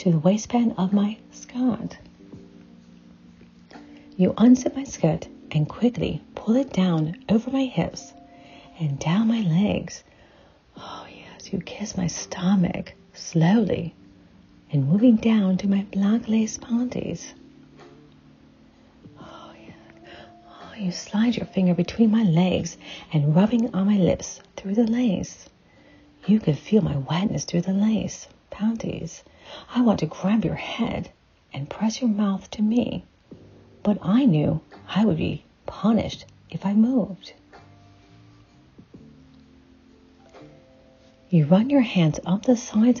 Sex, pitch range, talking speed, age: female, 160-225 Hz, 130 wpm, 40-59